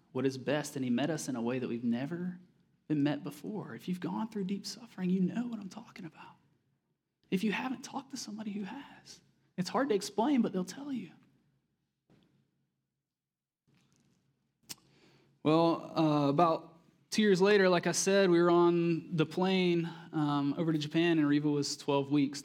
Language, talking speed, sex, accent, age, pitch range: English, 180 wpm, male, American, 20-39, 155-220 Hz